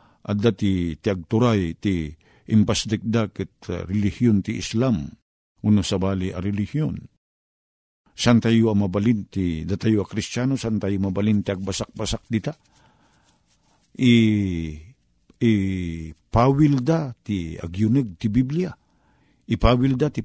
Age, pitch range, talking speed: 50-69, 100-135 Hz, 100 wpm